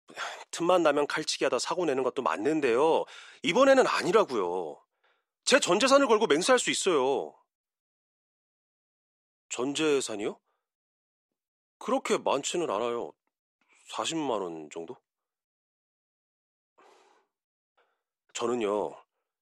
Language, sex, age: Korean, male, 40-59